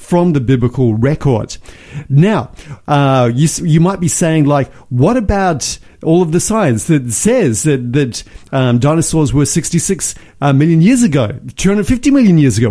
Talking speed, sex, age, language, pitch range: 165 wpm, male, 50-69, English, 125-160 Hz